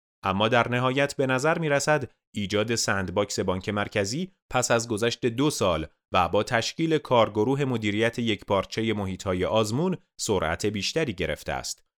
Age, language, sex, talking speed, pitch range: 30-49, Persian, male, 145 wpm, 100-125 Hz